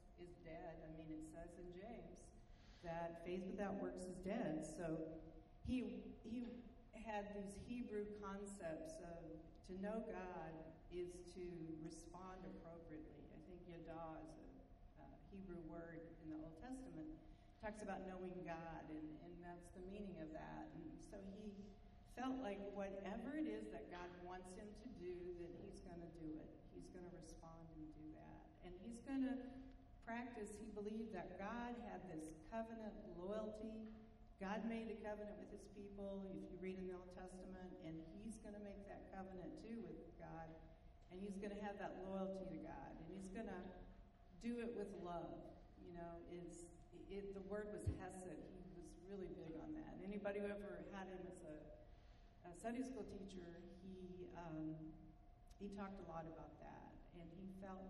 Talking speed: 180 wpm